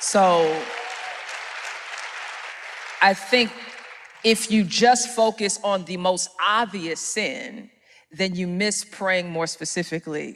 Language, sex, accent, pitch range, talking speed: English, female, American, 160-190 Hz, 105 wpm